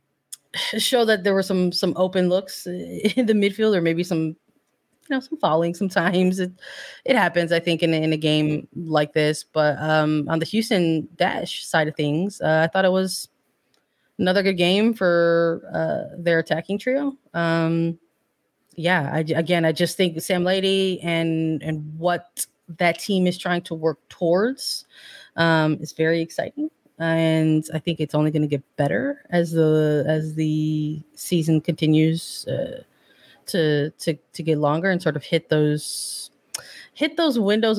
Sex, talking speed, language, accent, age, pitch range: female, 165 wpm, English, American, 20-39, 155-185 Hz